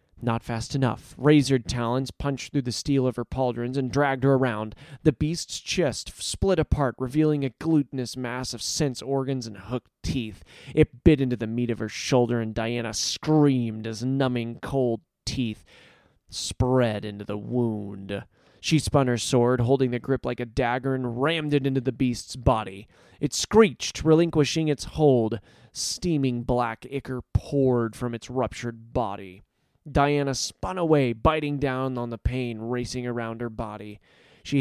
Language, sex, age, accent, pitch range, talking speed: English, male, 30-49, American, 115-135 Hz, 160 wpm